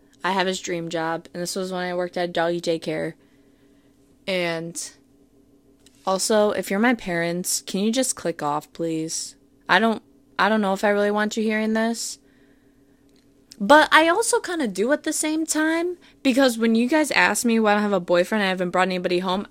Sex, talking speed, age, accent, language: female, 200 wpm, 20-39, American, English